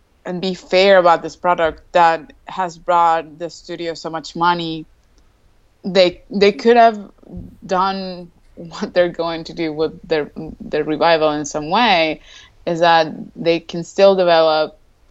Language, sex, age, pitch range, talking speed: English, female, 20-39, 150-175 Hz, 145 wpm